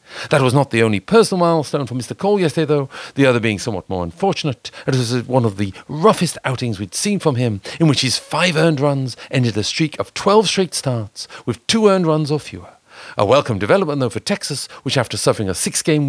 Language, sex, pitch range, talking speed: English, male, 115-160 Hz, 225 wpm